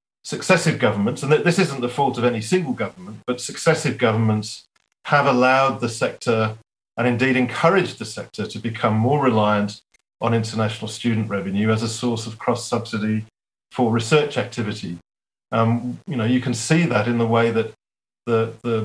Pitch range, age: 110-125 Hz, 40-59